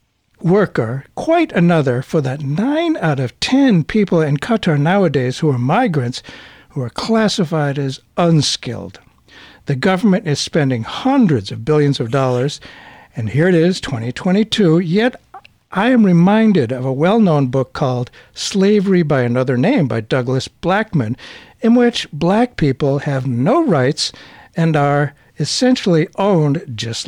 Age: 60-79